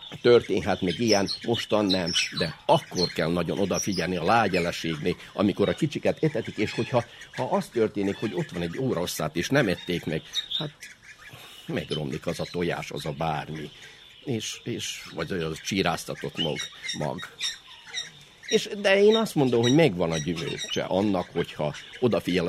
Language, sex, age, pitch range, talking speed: Hungarian, male, 50-69, 90-140 Hz, 155 wpm